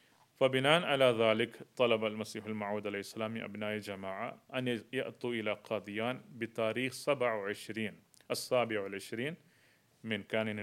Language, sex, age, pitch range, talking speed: Arabic, male, 30-49, 105-125 Hz, 105 wpm